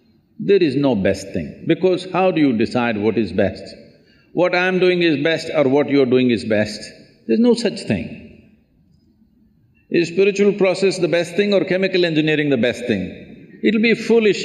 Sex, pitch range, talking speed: male, 130-185 Hz, 185 wpm